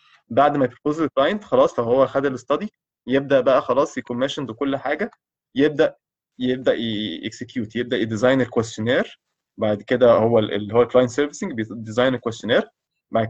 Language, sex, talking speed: Arabic, male, 150 wpm